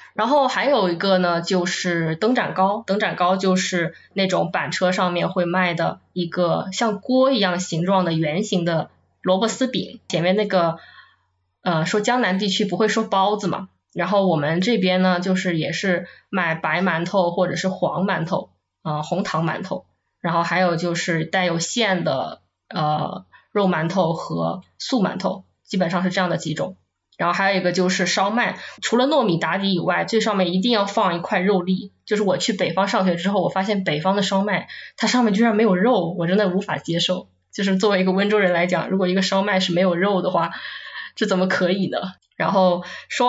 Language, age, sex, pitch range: Chinese, 20-39, female, 175-200 Hz